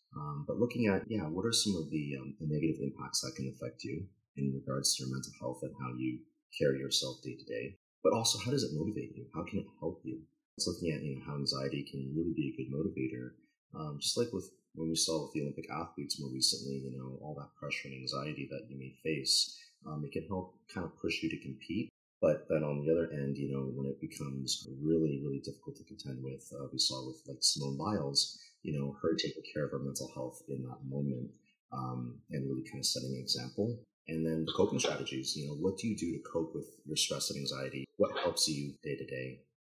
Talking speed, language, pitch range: 240 wpm, English, 65-80 Hz